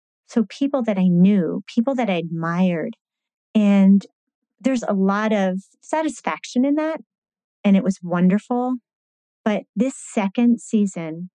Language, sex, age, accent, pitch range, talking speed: English, female, 30-49, American, 190-235 Hz, 130 wpm